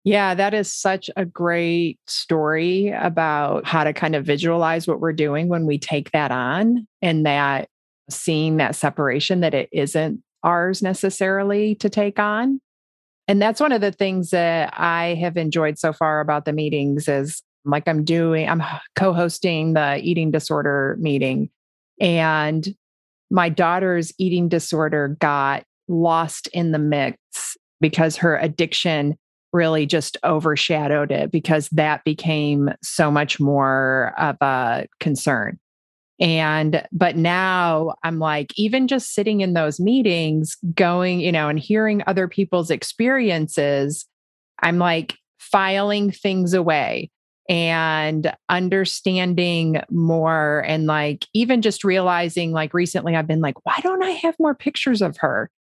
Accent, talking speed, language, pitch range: American, 140 wpm, English, 155-190 Hz